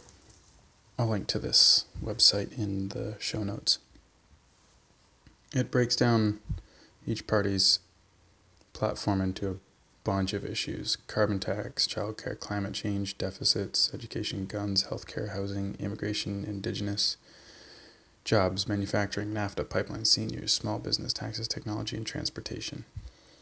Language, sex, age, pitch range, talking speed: English, male, 20-39, 100-110 Hz, 115 wpm